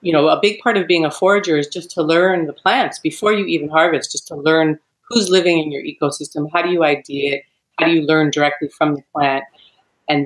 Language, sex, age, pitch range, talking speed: English, female, 40-59, 140-180 Hz, 240 wpm